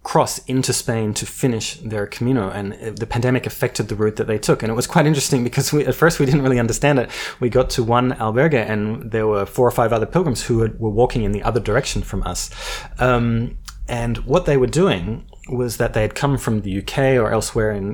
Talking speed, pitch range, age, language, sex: 235 wpm, 110-130 Hz, 20-39, English, male